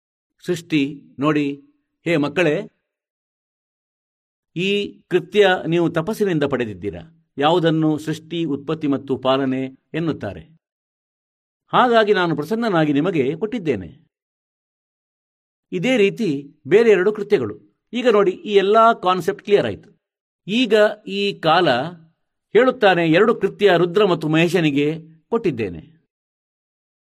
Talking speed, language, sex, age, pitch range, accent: 95 wpm, Kannada, male, 50-69, 150-205 Hz, native